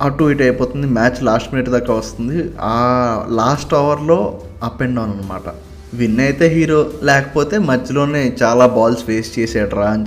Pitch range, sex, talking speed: 110-145 Hz, male, 150 wpm